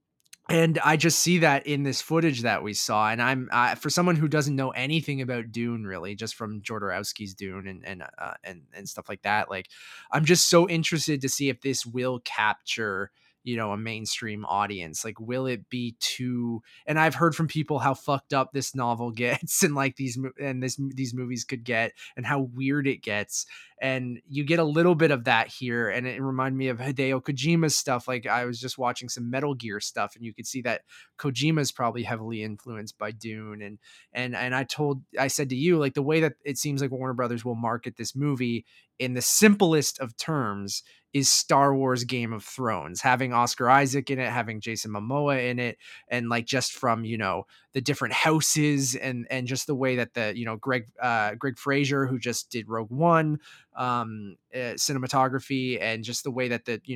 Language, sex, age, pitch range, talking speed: English, male, 20-39, 115-140 Hz, 210 wpm